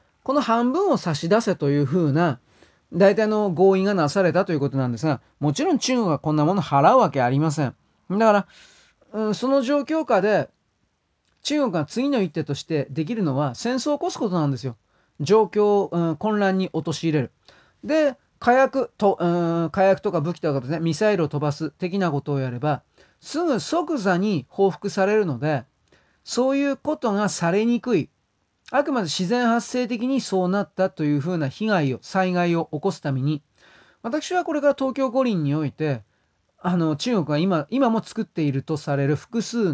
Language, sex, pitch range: Japanese, male, 150-230 Hz